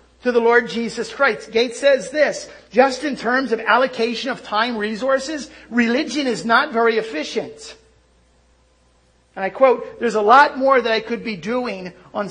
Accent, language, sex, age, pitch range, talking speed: American, English, male, 50-69, 195-255 Hz, 165 wpm